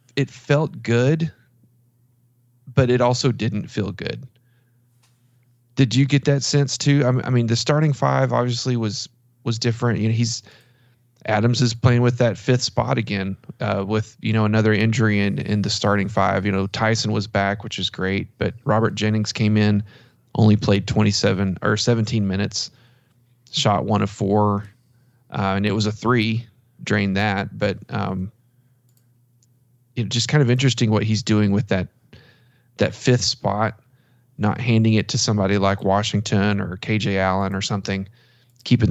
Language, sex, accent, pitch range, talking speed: English, male, American, 105-125 Hz, 160 wpm